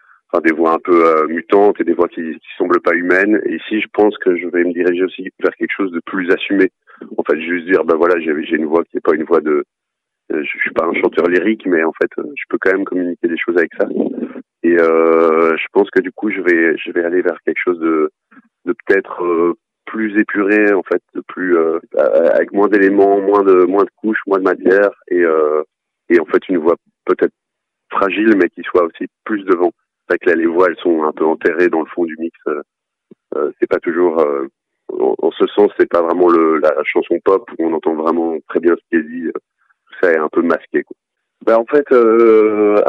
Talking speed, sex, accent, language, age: 235 wpm, male, French, French, 40-59